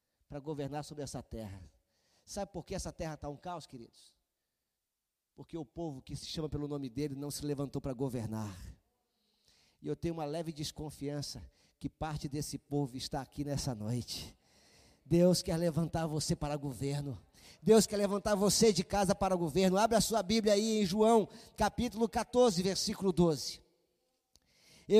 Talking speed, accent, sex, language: 165 wpm, Brazilian, male, Portuguese